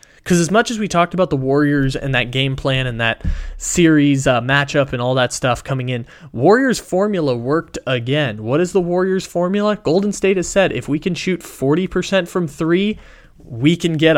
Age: 20-39